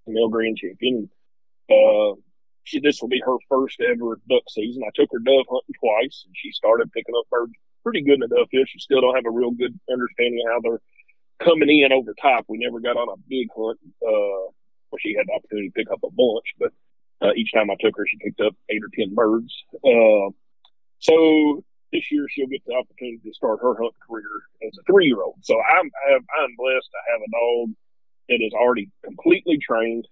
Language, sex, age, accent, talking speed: English, male, 40-59, American, 210 wpm